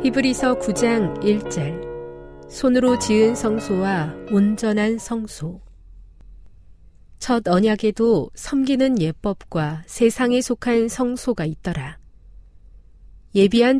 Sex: female